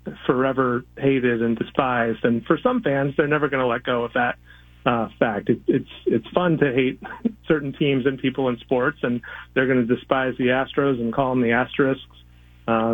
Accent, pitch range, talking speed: American, 120-140 Hz, 200 wpm